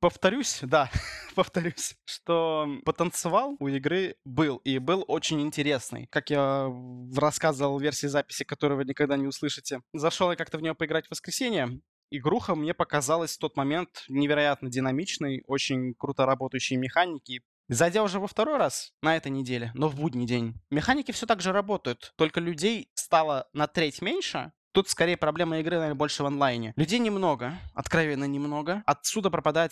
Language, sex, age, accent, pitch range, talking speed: Russian, male, 20-39, native, 135-165 Hz, 160 wpm